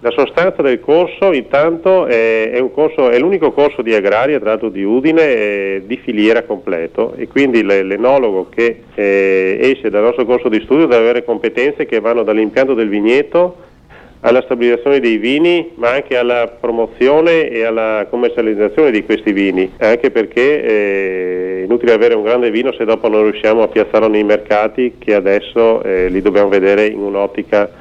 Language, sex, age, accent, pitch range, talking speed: Italian, male, 40-59, native, 100-125 Hz, 160 wpm